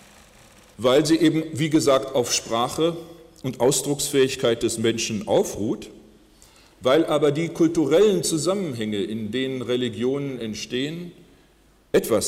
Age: 40-59